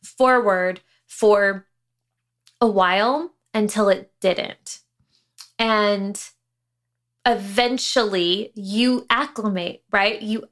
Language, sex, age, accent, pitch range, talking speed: English, female, 20-39, American, 190-230 Hz, 75 wpm